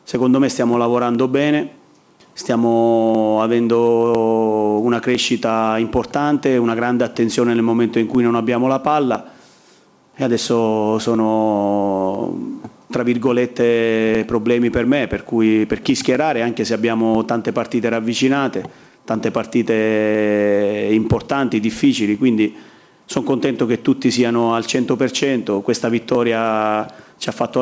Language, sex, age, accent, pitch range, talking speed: Italian, male, 30-49, native, 110-120 Hz, 125 wpm